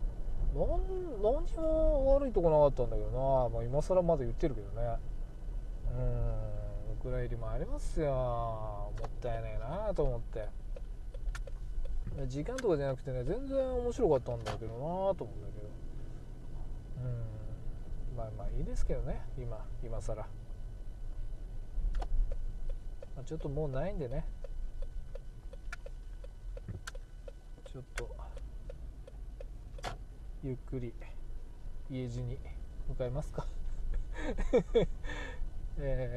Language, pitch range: Japanese, 105-135 Hz